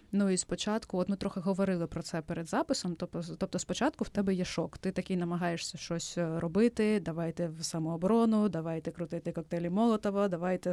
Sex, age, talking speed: female, 20-39, 170 wpm